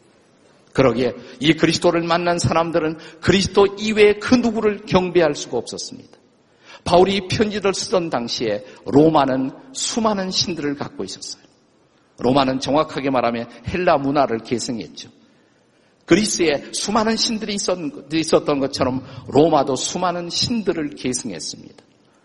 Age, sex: 50-69, male